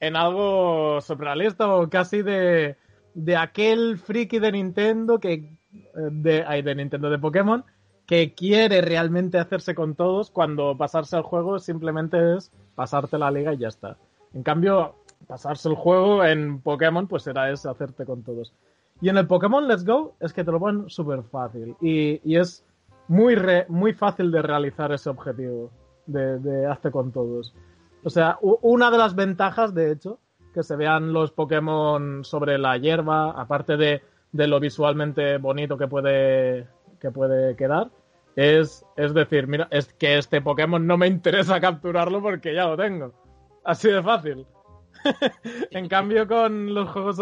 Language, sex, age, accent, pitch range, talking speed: Spanish, male, 30-49, Spanish, 145-185 Hz, 165 wpm